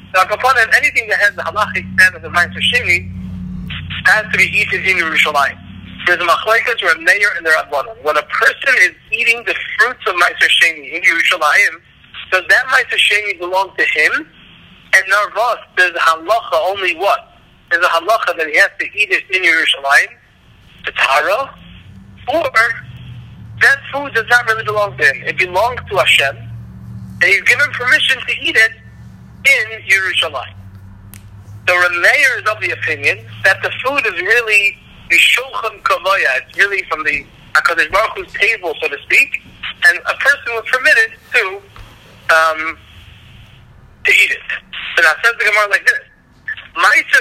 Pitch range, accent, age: 140-230 Hz, American, 50-69